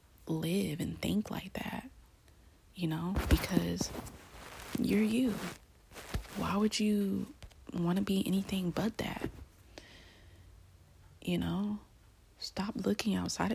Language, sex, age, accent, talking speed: English, female, 20-39, American, 105 wpm